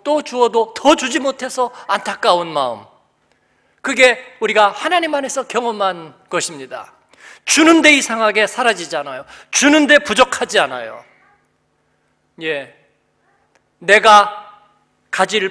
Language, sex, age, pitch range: Korean, male, 40-59, 235-305 Hz